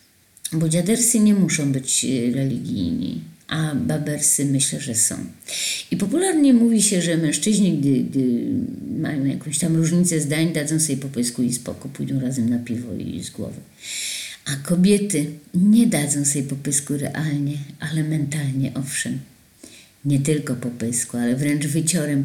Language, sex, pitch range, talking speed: Polish, female, 130-170 Hz, 140 wpm